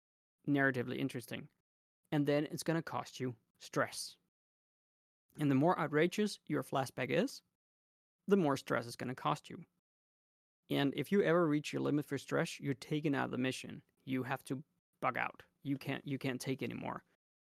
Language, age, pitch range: Danish, 20-39, 125-155 Hz